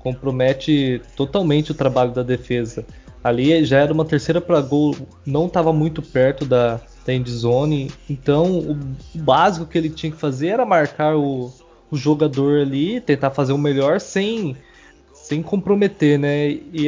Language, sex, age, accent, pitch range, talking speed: Portuguese, male, 20-39, Brazilian, 130-165 Hz, 155 wpm